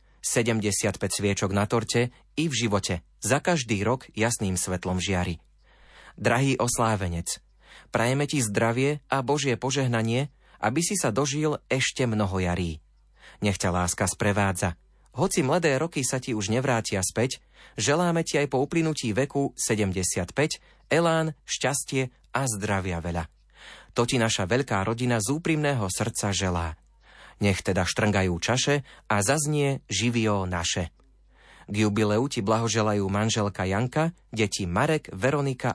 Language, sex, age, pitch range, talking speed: Slovak, male, 30-49, 95-135 Hz, 130 wpm